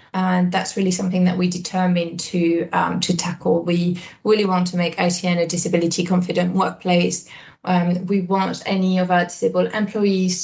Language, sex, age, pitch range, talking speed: English, female, 20-39, 175-190 Hz, 160 wpm